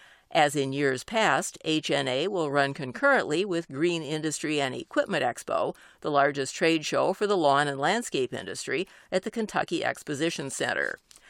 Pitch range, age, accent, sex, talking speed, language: 145-185 Hz, 50-69, American, female, 155 wpm, English